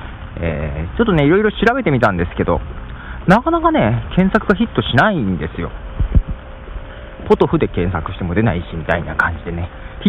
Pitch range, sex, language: 85-125 Hz, male, Japanese